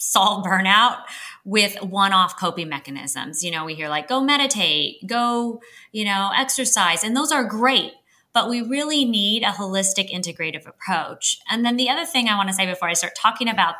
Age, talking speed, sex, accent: 20-39, 185 wpm, female, American